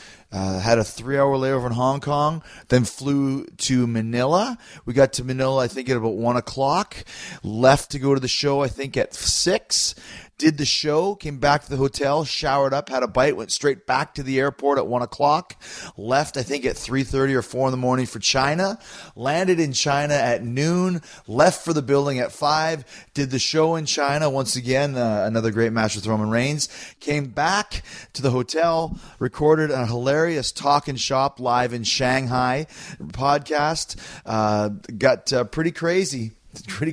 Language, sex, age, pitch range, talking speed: English, male, 30-49, 120-145 Hz, 185 wpm